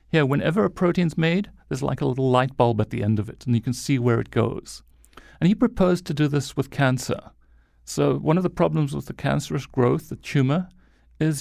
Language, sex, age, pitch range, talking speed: English, male, 40-59, 120-160 Hz, 225 wpm